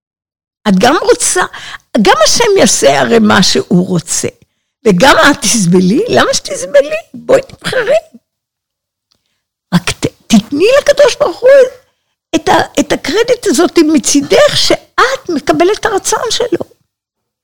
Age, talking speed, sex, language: 60-79, 115 wpm, female, Hebrew